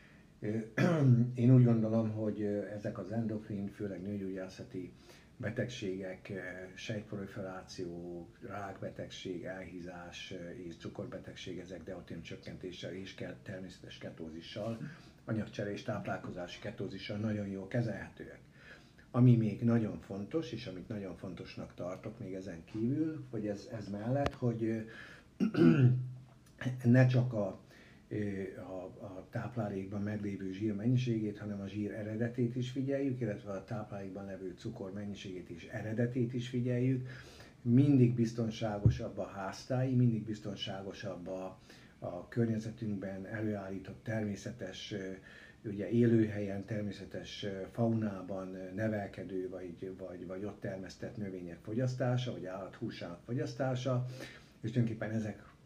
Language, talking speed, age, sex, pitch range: Hungarian, 105 wpm, 60-79, male, 95-120 Hz